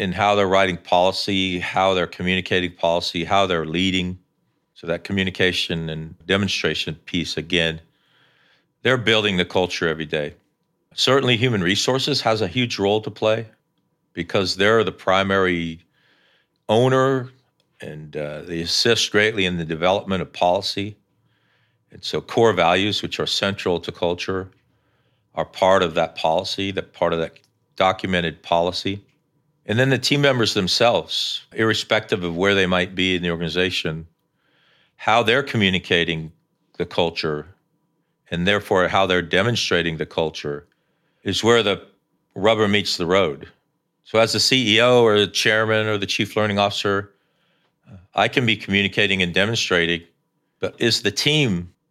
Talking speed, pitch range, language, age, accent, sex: 145 wpm, 90-110 Hz, English, 40-59, American, male